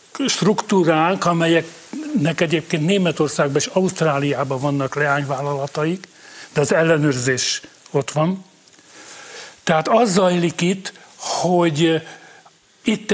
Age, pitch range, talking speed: 60-79, 145-190 Hz, 85 wpm